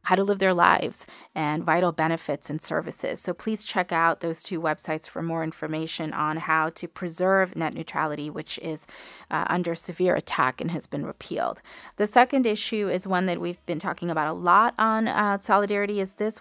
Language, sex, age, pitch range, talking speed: English, female, 30-49, 165-200 Hz, 195 wpm